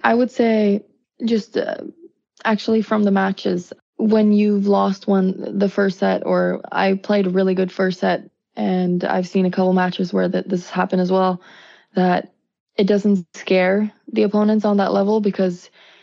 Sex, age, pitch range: female, 20-39, 180-200 Hz